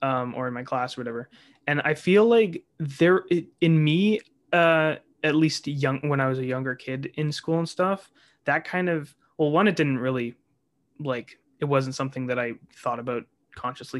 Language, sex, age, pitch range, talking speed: English, male, 20-39, 130-150 Hz, 195 wpm